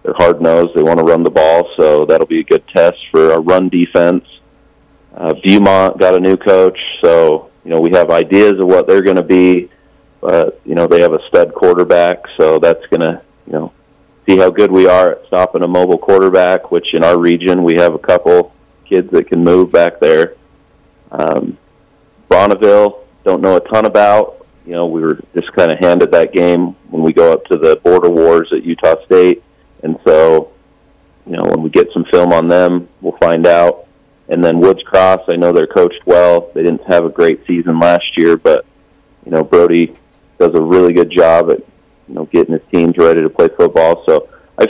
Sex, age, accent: male, 40-59, American